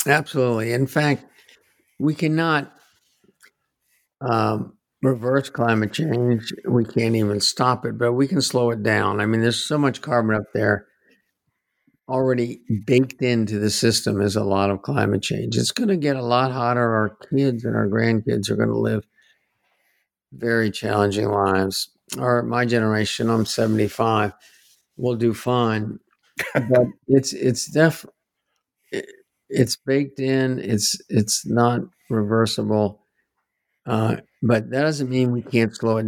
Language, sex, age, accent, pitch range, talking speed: English, male, 50-69, American, 110-130 Hz, 140 wpm